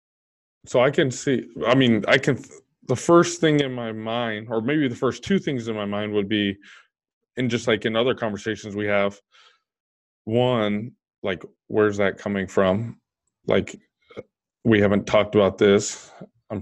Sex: male